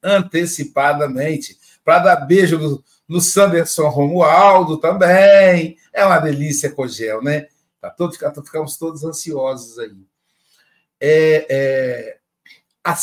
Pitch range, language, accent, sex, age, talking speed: 145-180 Hz, Portuguese, Brazilian, male, 60-79, 110 wpm